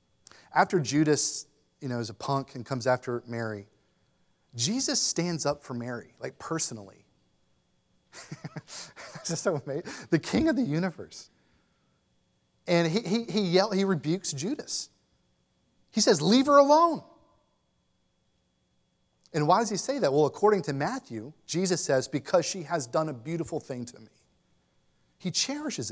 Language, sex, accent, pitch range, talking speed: English, male, American, 120-165 Hz, 145 wpm